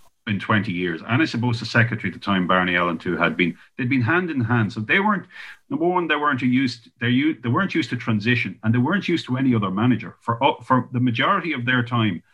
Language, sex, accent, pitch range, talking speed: English, male, Irish, 90-120 Hz, 235 wpm